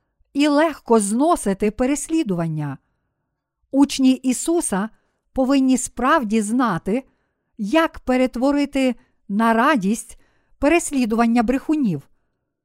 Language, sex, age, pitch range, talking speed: Ukrainian, female, 50-69, 215-280 Hz, 70 wpm